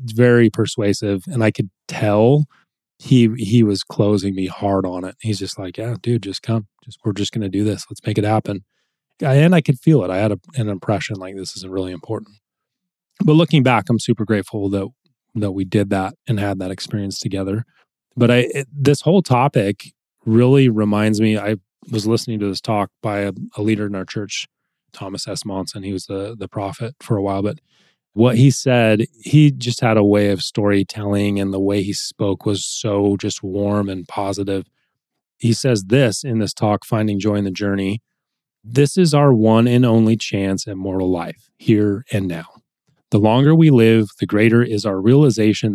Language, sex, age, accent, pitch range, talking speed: English, male, 20-39, American, 100-120 Hz, 200 wpm